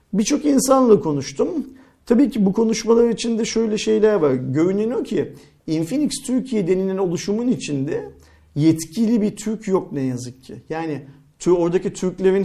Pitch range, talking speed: 150-200 Hz, 145 wpm